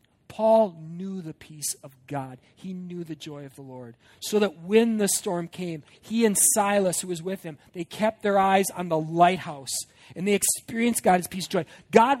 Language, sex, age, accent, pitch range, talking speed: English, male, 40-59, American, 155-215 Hz, 200 wpm